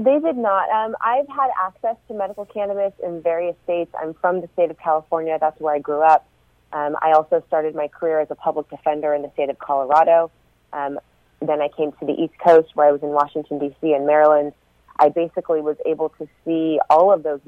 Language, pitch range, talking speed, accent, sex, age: English, 150-180 Hz, 220 wpm, American, female, 30-49